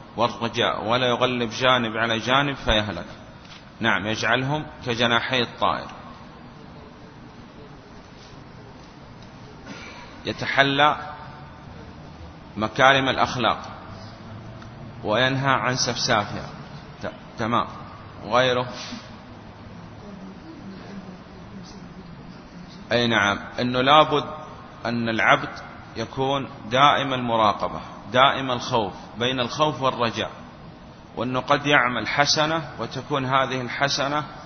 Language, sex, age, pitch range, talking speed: Arabic, male, 30-49, 115-135 Hz, 70 wpm